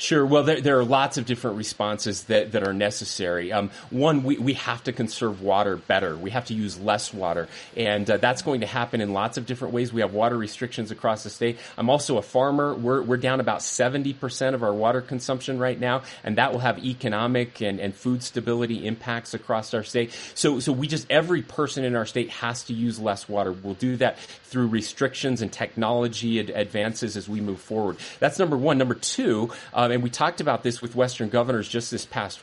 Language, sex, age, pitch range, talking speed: English, male, 30-49, 115-140 Hz, 220 wpm